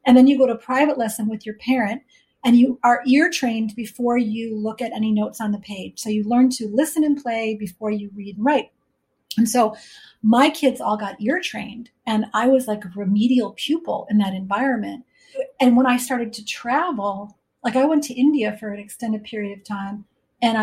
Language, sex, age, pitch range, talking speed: English, female, 40-59, 210-255 Hz, 210 wpm